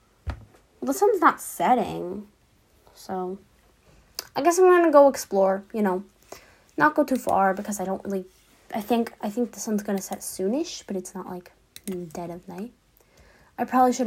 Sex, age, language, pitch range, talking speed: female, 10-29, English, 190-270 Hz, 175 wpm